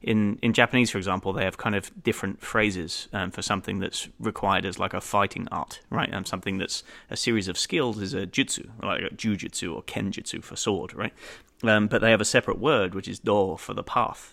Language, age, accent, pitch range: English, 30-49, British, 95-110 Hz